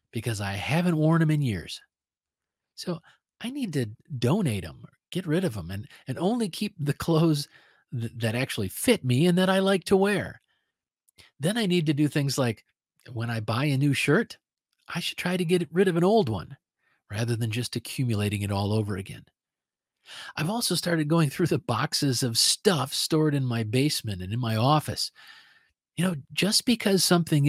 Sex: male